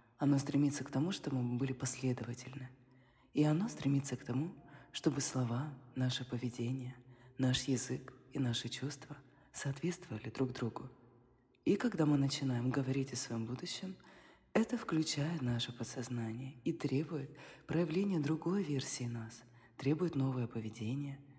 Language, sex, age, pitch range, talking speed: Russian, female, 20-39, 125-150 Hz, 130 wpm